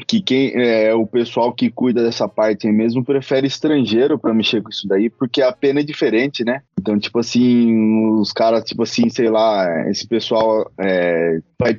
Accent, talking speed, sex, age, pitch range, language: Brazilian, 185 wpm, male, 20-39, 110-135 Hz, Portuguese